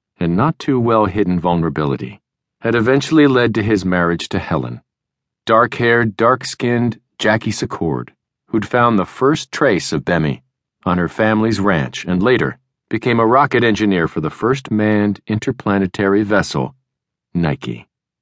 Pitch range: 90-130 Hz